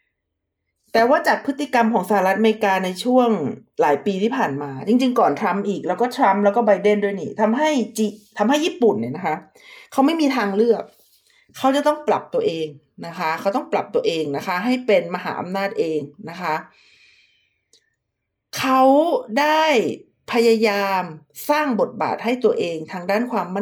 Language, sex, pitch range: Thai, female, 185-245 Hz